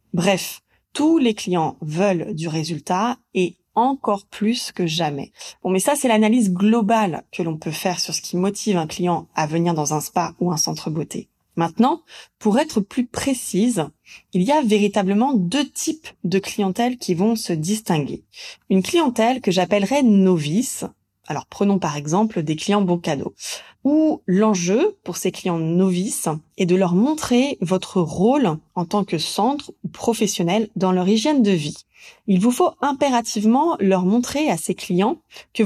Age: 20-39